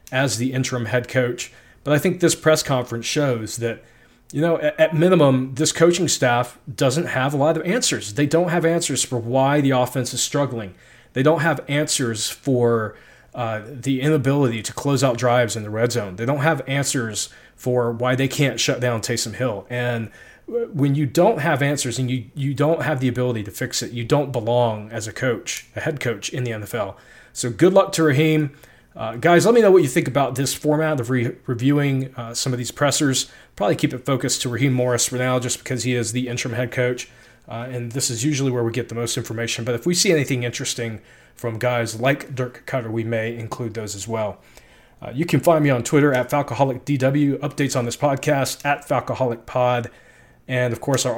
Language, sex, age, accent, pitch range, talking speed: English, male, 30-49, American, 120-145 Hz, 210 wpm